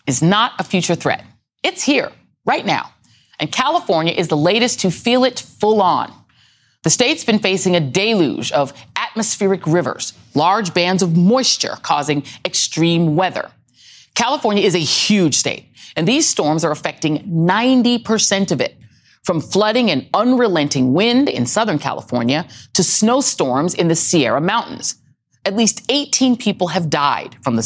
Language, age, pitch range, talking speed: English, 30-49, 150-220 Hz, 150 wpm